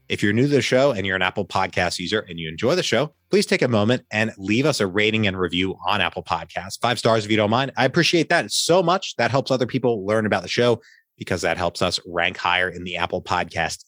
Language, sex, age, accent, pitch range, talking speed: English, male, 30-49, American, 85-115 Hz, 260 wpm